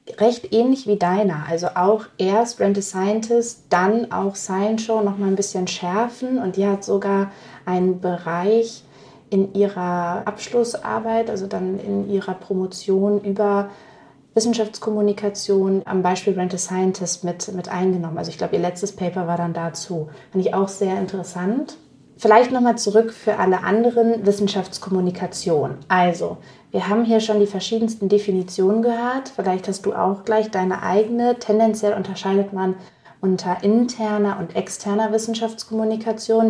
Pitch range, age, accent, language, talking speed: 185-215 Hz, 30-49, German, German, 145 wpm